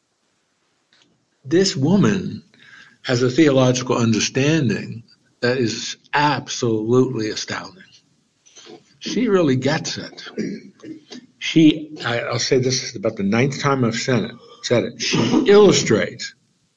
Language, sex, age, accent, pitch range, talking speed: English, male, 60-79, American, 120-165 Hz, 105 wpm